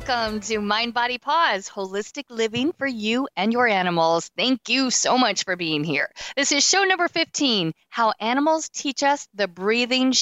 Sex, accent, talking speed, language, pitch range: female, American, 175 wpm, English, 190-255 Hz